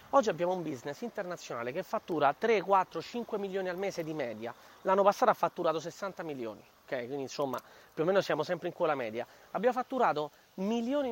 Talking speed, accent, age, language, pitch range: 190 wpm, native, 30-49, Italian, 160-210 Hz